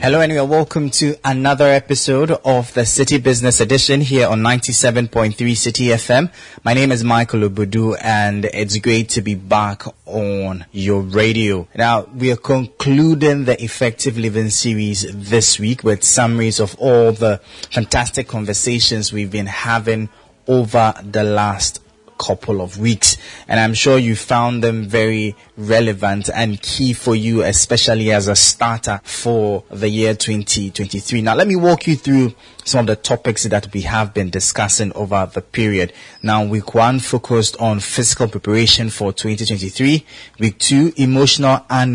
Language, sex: English, male